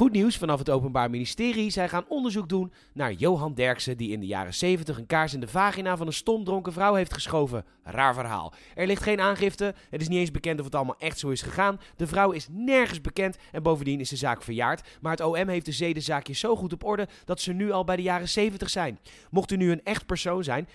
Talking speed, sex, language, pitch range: 245 wpm, male, Dutch, 140-180 Hz